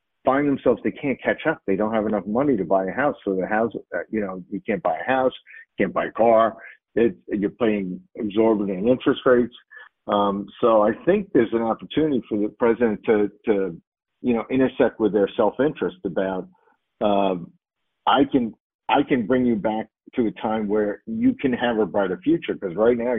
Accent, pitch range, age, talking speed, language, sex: American, 95-120 Hz, 50-69, 200 wpm, English, male